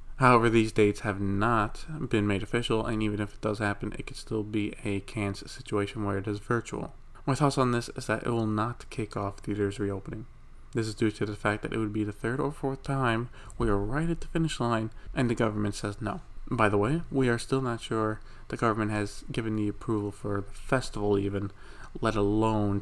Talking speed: 225 wpm